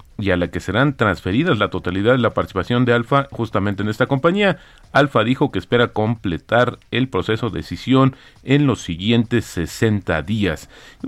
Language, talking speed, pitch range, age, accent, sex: Spanish, 175 wpm, 100-130 Hz, 40-59, Mexican, male